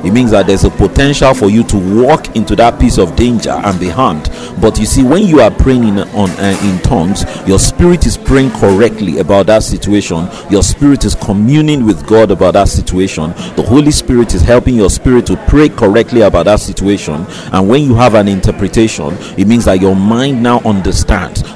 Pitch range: 95-120 Hz